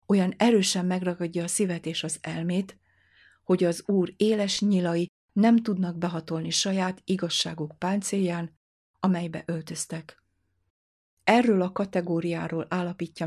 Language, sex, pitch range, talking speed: Hungarian, female, 165-190 Hz, 115 wpm